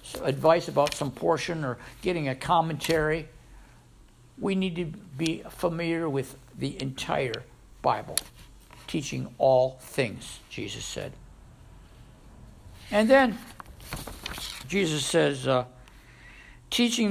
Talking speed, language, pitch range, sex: 100 wpm, English, 120-175 Hz, male